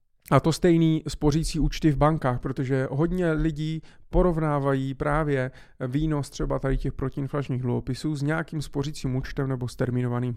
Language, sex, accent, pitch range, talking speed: Czech, male, native, 125-150 Hz, 145 wpm